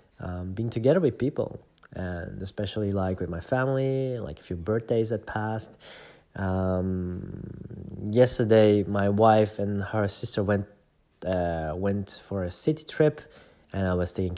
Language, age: English, 20-39